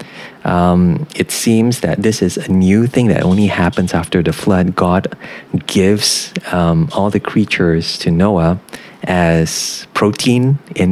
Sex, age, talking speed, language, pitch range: male, 30-49, 145 wpm, English, 85-110 Hz